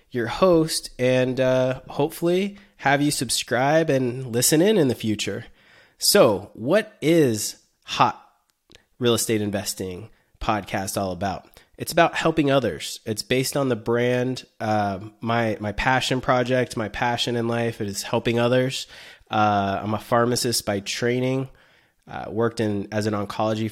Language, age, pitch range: English, 20-39, 110-125 Hz